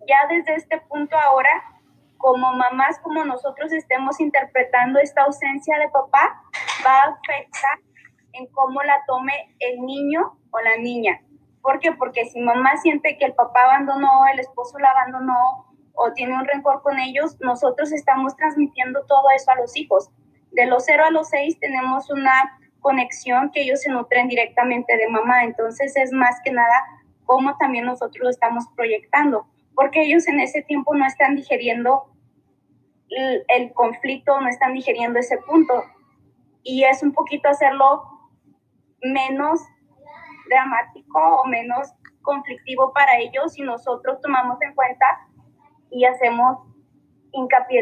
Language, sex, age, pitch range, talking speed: Spanish, female, 20-39, 250-285 Hz, 145 wpm